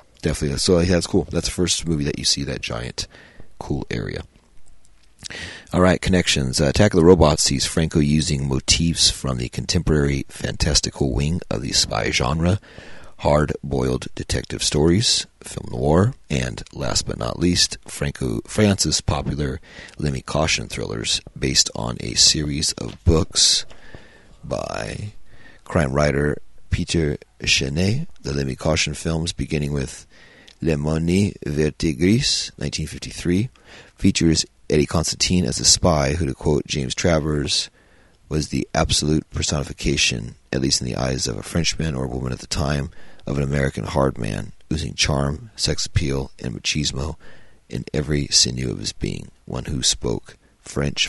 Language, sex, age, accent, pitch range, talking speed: English, male, 40-59, American, 70-85 Hz, 145 wpm